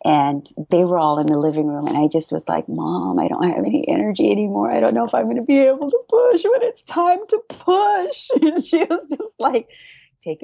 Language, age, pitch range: English, 30-49, 155-205 Hz